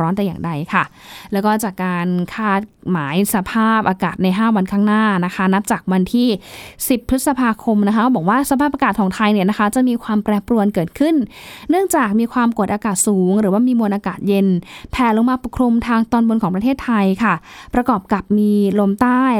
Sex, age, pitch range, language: female, 10-29, 195-235 Hz, Thai